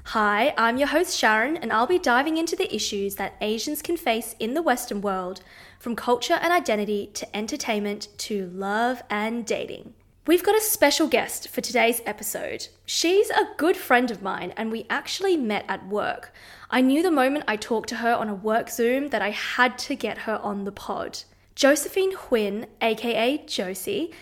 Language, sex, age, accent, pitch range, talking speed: English, female, 20-39, Australian, 215-295 Hz, 185 wpm